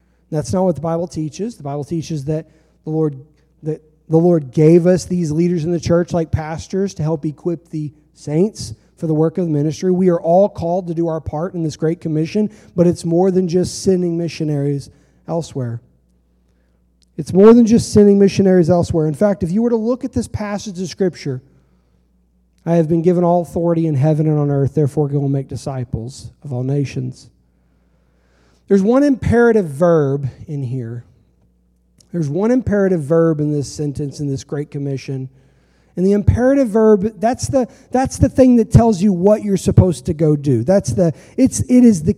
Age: 40-59